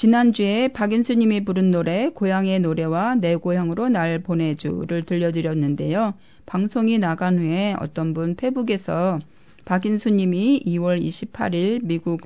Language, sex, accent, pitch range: Korean, female, native, 170-225 Hz